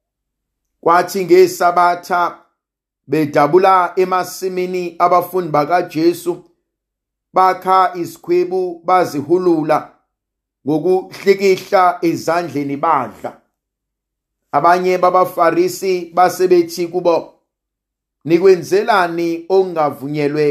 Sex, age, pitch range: male, 50-69, 150-185 Hz